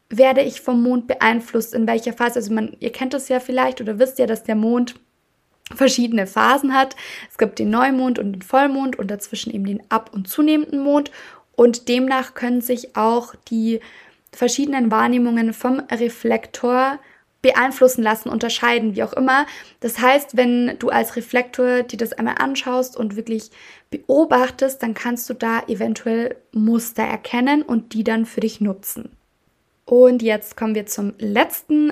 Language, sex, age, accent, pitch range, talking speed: German, female, 20-39, German, 225-260 Hz, 165 wpm